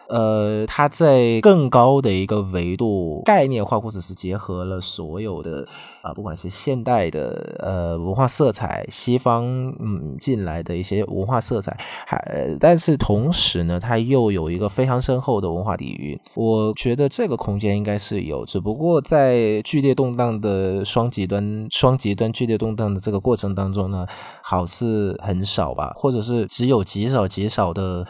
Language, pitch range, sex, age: Vietnamese, 95-125 Hz, male, 20-39